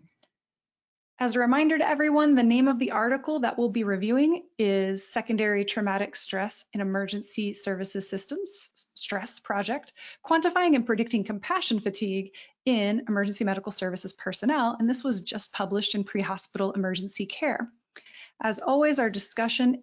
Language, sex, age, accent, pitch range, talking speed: English, female, 30-49, American, 205-260 Hz, 140 wpm